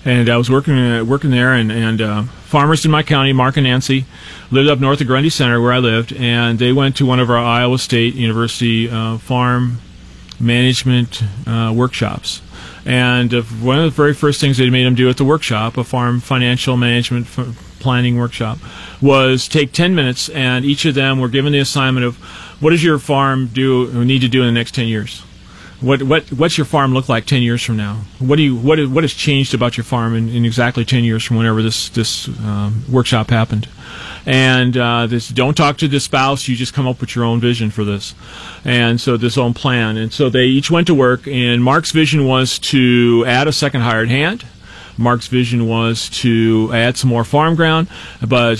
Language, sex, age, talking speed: English, male, 40-59, 210 wpm